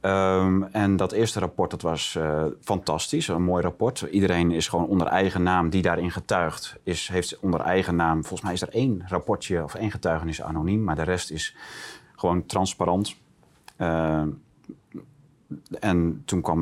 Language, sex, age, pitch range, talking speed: Dutch, male, 30-49, 80-95 Hz, 165 wpm